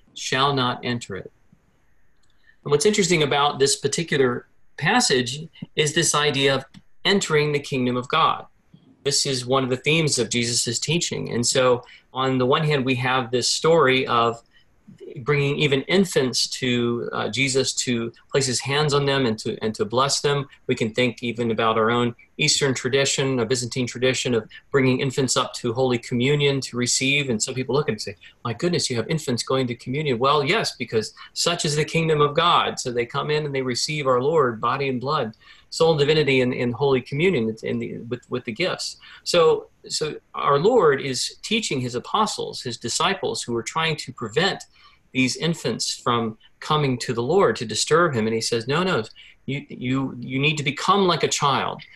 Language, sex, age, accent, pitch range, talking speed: English, male, 40-59, American, 125-150 Hz, 190 wpm